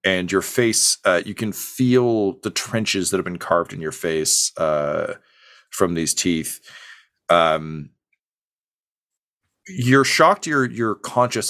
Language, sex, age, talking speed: English, male, 40-59, 130 wpm